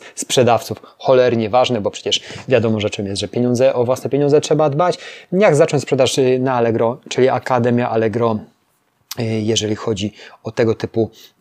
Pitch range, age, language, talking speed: 110-135 Hz, 20-39, Polish, 155 wpm